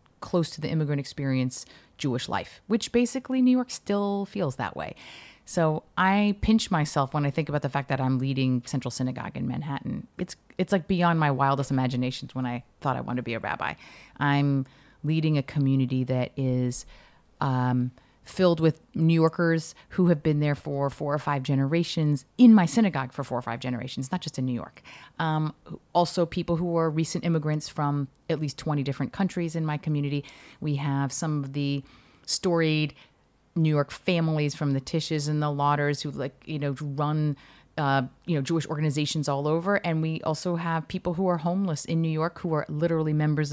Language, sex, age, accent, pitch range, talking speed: English, female, 30-49, American, 135-165 Hz, 190 wpm